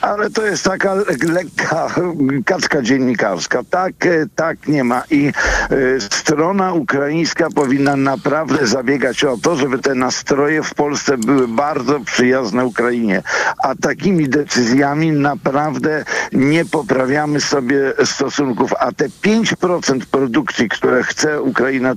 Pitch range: 140-180 Hz